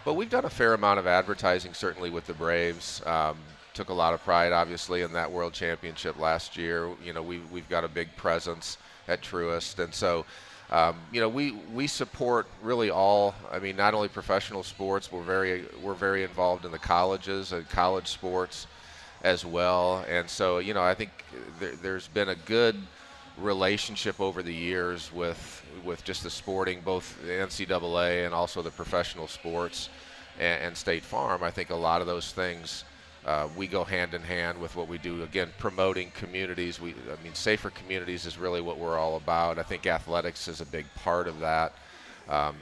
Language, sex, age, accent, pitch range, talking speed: English, male, 40-59, American, 85-95 Hz, 190 wpm